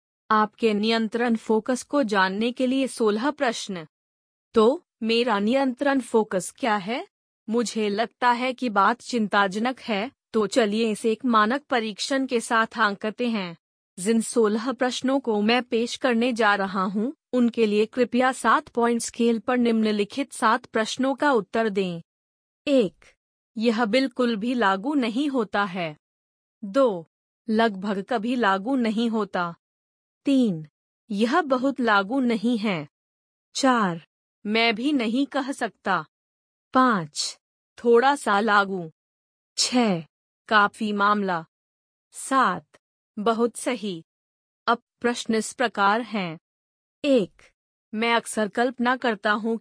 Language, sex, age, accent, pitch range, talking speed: Hindi, female, 30-49, native, 205-250 Hz, 125 wpm